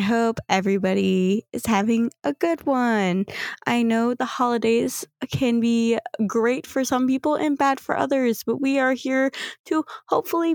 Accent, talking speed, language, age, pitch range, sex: American, 160 wpm, English, 20-39, 195-280 Hz, female